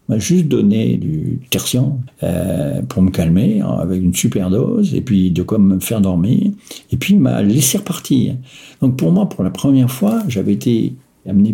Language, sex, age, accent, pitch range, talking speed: French, male, 60-79, French, 95-135 Hz, 180 wpm